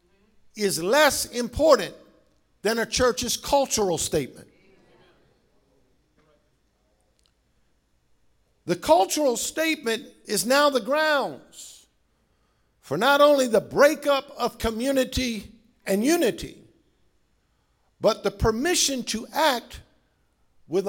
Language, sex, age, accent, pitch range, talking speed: English, male, 50-69, American, 200-275 Hz, 85 wpm